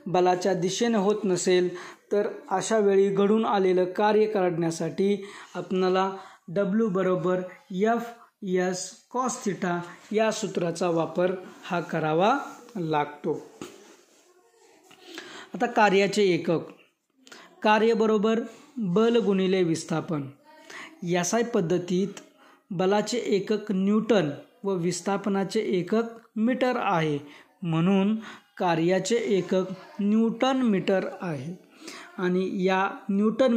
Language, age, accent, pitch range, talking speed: Marathi, 20-39, native, 180-225 Hz, 85 wpm